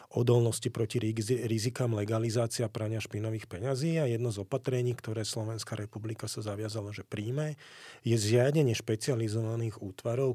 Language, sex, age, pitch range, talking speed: Slovak, male, 40-59, 110-125 Hz, 130 wpm